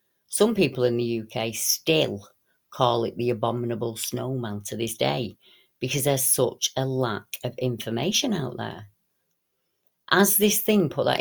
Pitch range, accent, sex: 115-135 Hz, British, female